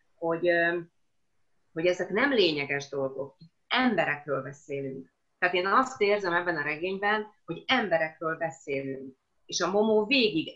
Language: Hungarian